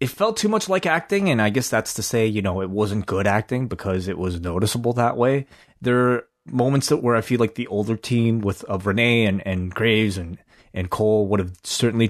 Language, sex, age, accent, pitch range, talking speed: English, male, 30-49, American, 95-115 Hz, 235 wpm